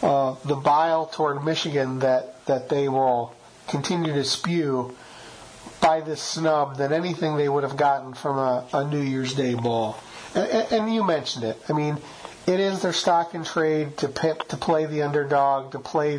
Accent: American